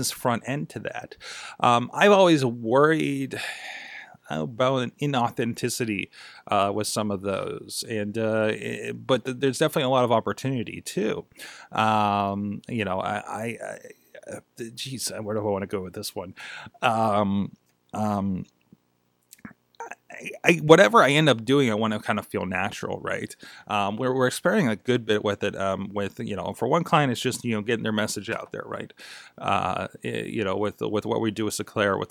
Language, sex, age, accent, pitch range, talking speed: English, male, 30-49, American, 105-125 Hz, 185 wpm